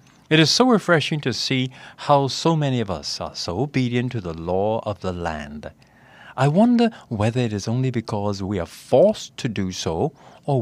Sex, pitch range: male, 100-140 Hz